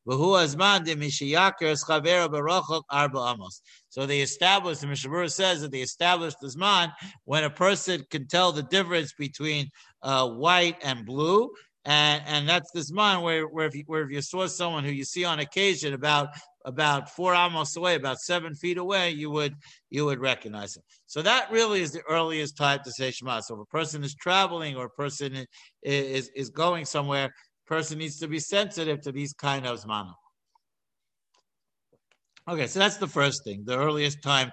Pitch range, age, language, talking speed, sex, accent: 140-175 Hz, 50-69, English, 175 wpm, male, American